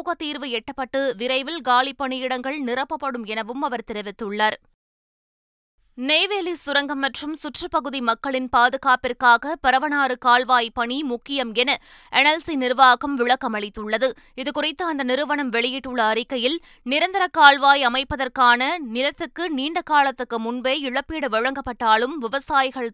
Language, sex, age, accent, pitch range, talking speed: Tamil, female, 20-39, native, 245-290 Hz, 100 wpm